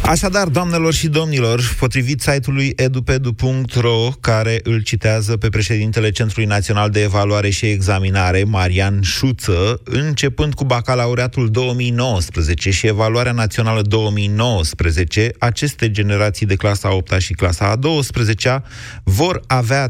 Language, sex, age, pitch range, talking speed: Romanian, male, 30-49, 105-130 Hz, 120 wpm